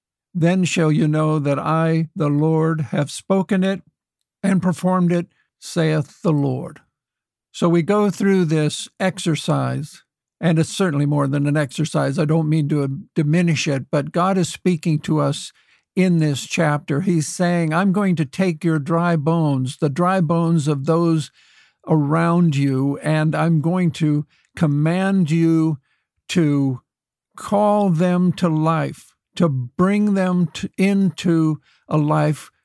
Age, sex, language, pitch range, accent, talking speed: 60-79, male, English, 155-190 Hz, American, 145 wpm